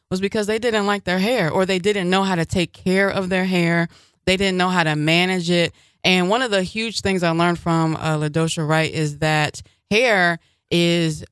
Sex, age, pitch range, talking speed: female, 20-39, 155-185 Hz, 215 wpm